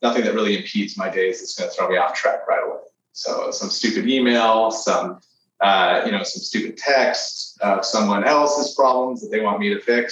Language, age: English, 30-49